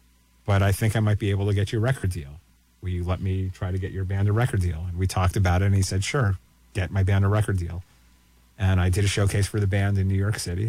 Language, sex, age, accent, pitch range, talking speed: English, male, 30-49, American, 90-105 Hz, 290 wpm